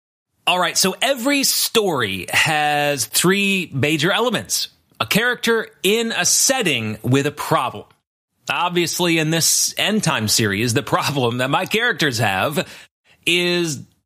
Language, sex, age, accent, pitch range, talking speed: English, male, 30-49, American, 145-200 Hz, 130 wpm